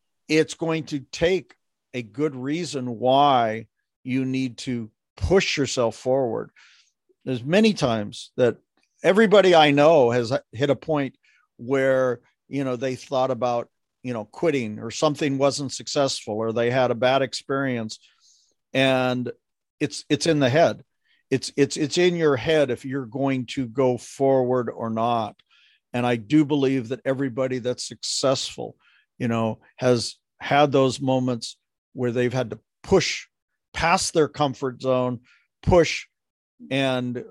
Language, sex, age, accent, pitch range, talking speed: English, male, 50-69, American, 120-145 Hz, 145 wpm